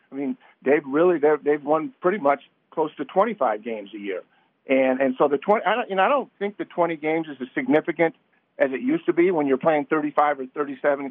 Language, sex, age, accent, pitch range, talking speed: English, male, 50-69, American, 140-175 Hz, 230 wpm